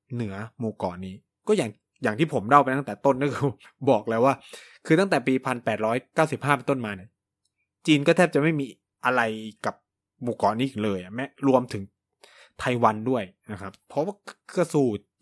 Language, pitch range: Thai, 100-140 Hz